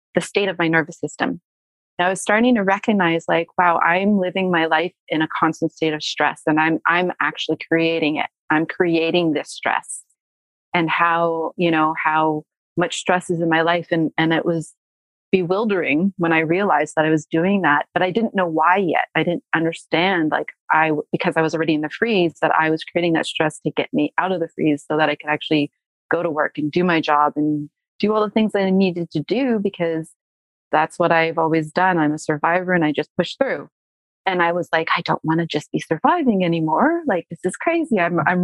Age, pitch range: 30-49, 160-185 Hz